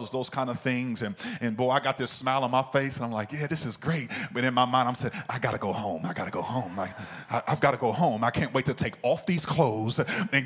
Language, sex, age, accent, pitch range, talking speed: English, male, 30-49, American, 135-200 Hz, 285 wpm